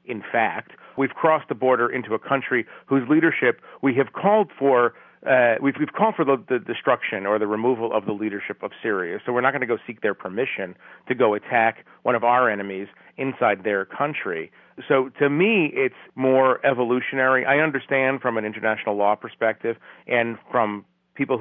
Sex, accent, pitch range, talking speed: male, American, 105-130 Hz, 185 wpm